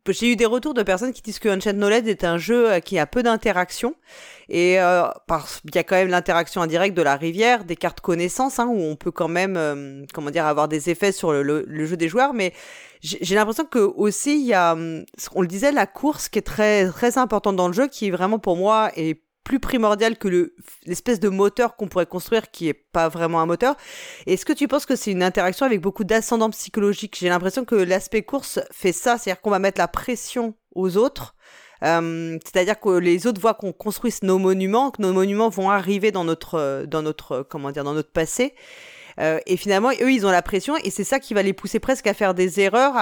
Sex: female